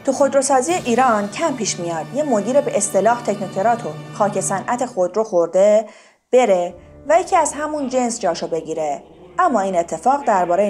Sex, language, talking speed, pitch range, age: female, Persian, 150 wpm, 180-255 Hz, 30-49